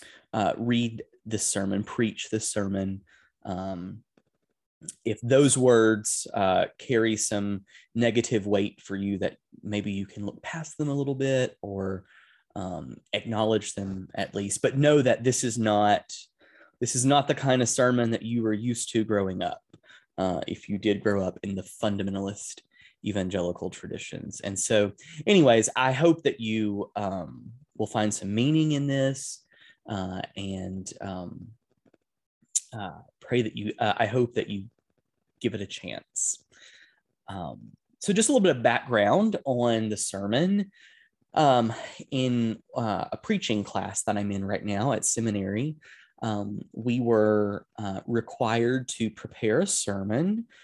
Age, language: 20-39, English